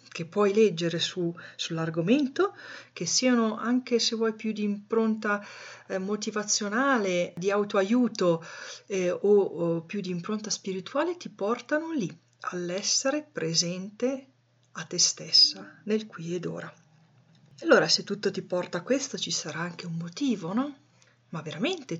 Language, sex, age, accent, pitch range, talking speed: Italian, female, 40-59, native, 170-210 Hz, 135 wpm